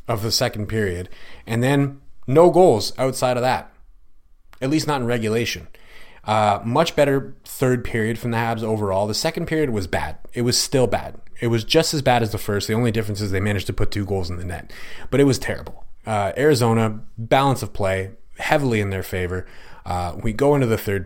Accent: American